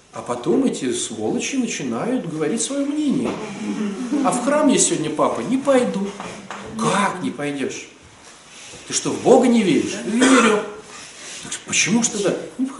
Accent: native